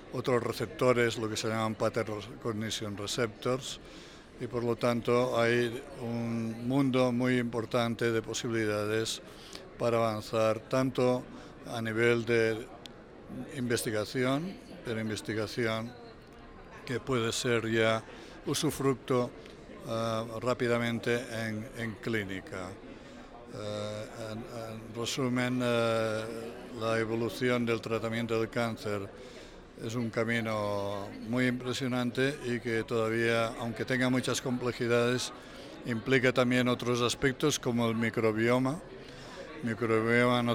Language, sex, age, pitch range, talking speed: Spanish, male, 60-79, 110-125 Hz, 105 wpm